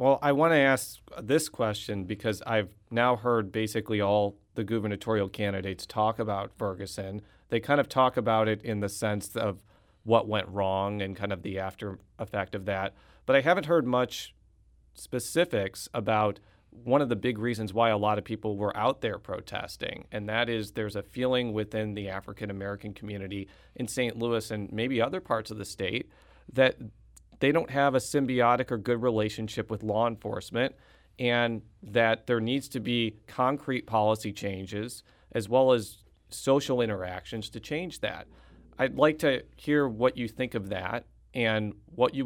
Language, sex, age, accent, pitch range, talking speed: English, male, 40-59, American, 105-120 Hz, 175 wpm